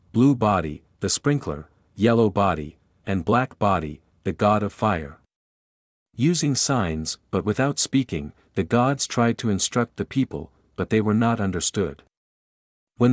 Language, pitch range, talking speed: English, 95-125 Hz, 140 wpm